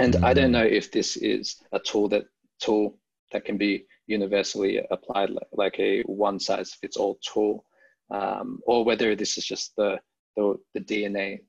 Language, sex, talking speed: English, male, 180 wpm